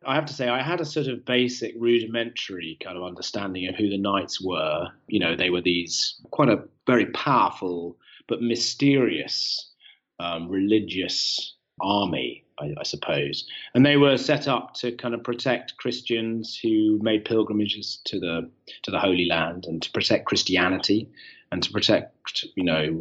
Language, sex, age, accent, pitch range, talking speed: English, male, 30-49, British, 95-120 Hz, 165 wpm